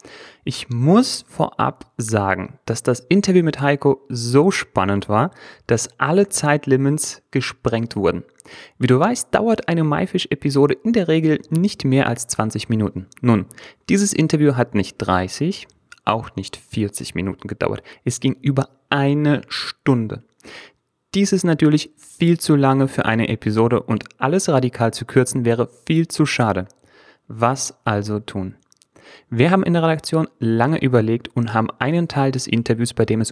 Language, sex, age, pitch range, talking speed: German, male, 30-49, 115-150 Hz, 150 wpm